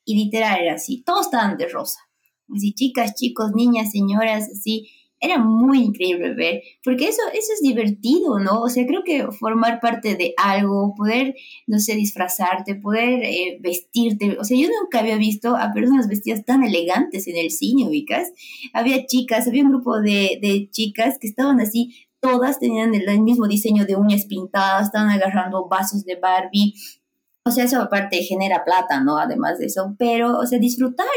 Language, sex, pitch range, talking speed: Spanish, female, 205-255 Hz, 175 wpm